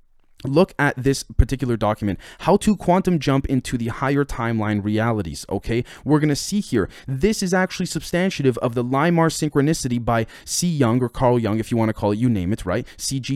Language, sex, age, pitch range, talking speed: English, male, 20-39, 110-145 Hz, 200 wpm